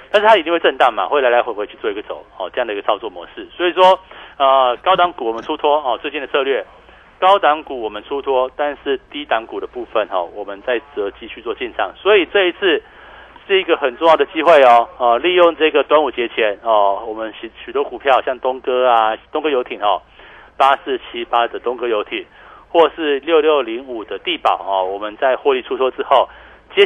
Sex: male